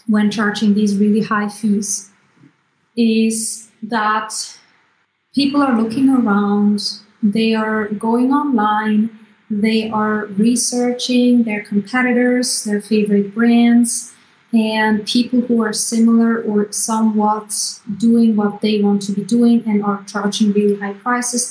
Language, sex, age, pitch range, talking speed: English, female, 30-49, 210-230 Hz, 125 wpm